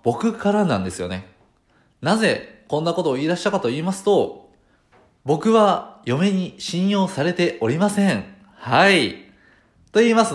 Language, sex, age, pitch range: Japanese, male, 20-39, 125-185 Hz